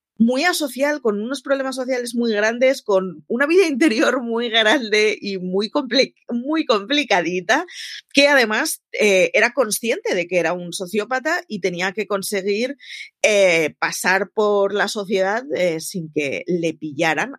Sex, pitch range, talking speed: female, 185-265 Hz, 150 wpm